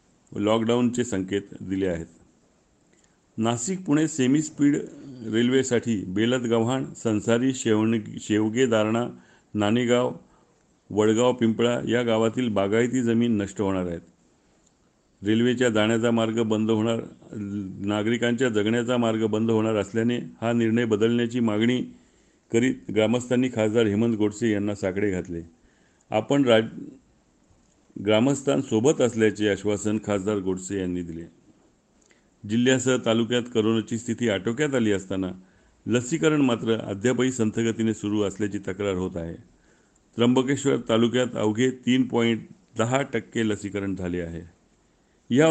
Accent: native